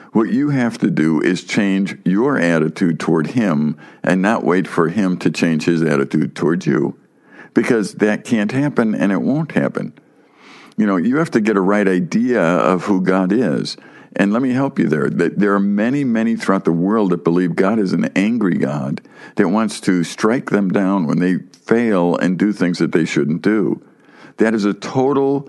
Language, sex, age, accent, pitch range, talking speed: English, male, 60-79, American, 90-130 Hz, 195 wpm